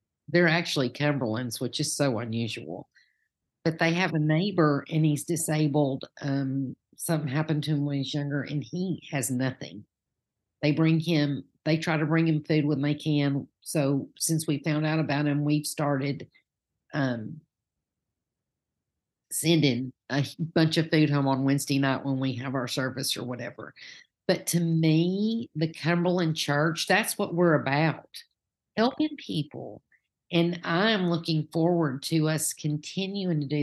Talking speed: 155 wpm